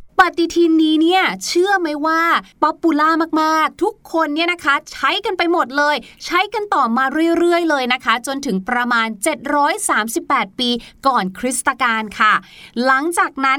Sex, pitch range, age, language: female, 240-335 Hz, 20-39, Thai